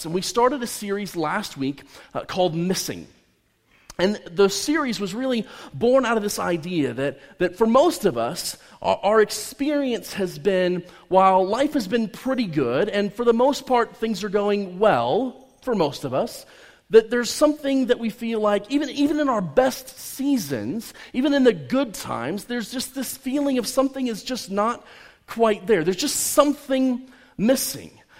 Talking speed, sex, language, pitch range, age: 175 wpm, male, English, 195-265 Hz, 30-49